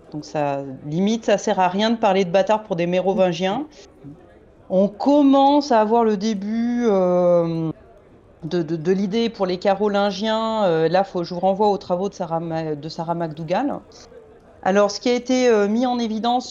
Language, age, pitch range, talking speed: French, 30-49, 180-235 Hz, 175 wpm